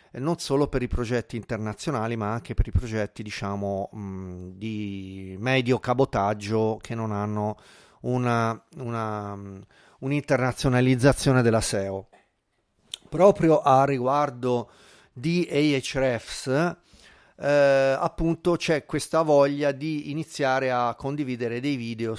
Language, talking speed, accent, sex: Italian, 100 wpm, native, male